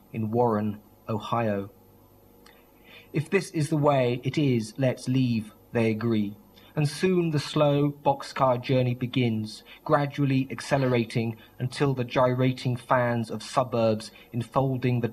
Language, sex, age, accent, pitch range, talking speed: English, male, 30-49, British, 115-140 Hz, 125 wpm